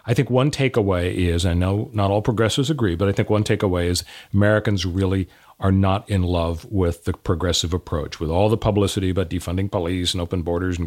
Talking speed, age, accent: 210 wpm, 40-59, American